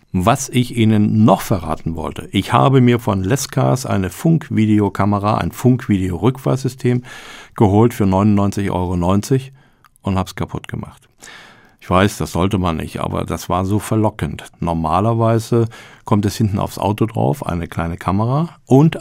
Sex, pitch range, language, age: male, 95-115 Hz, German, 50-69